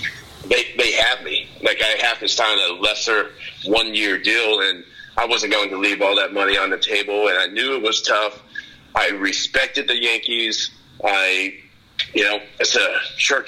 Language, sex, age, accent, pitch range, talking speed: English, male, 40-59, American, 100-145 Hz, 185 wpm